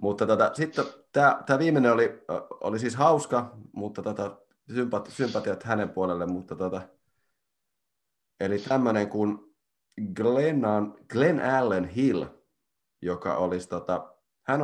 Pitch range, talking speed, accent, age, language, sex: 95-130 Hz, 105 wpm, native, 30-49, Finnish, male